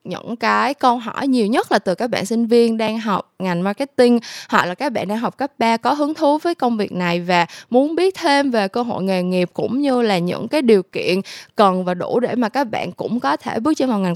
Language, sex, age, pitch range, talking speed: Vietnamese, female, 10-29, 190-260 Hz, 260 wpm